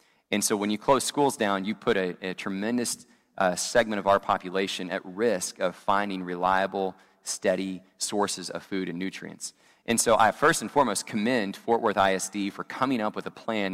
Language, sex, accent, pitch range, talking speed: English, male, American, 95-110 Hz, 190 wpm